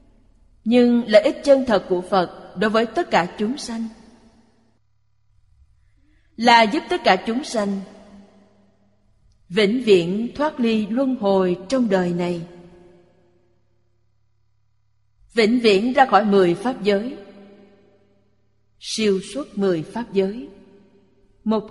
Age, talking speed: 30-49, 115 wpm